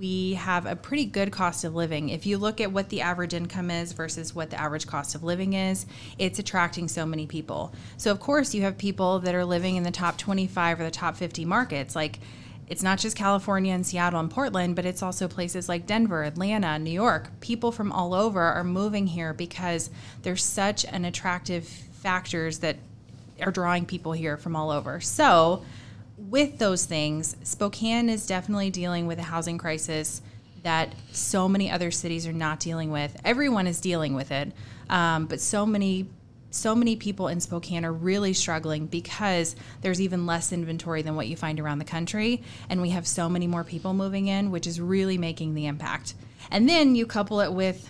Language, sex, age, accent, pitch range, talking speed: English, female, 30-49, American, 160-195 Hz, 195 wpm